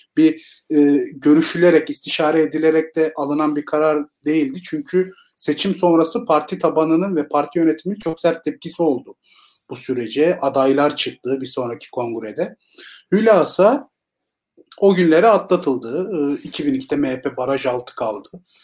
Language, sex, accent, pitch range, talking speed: Turkish, male, native, 145-185 Hz, 125 wpm